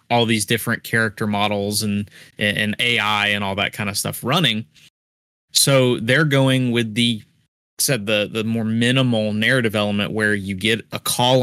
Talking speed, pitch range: 175 wpm, 105-130 Hz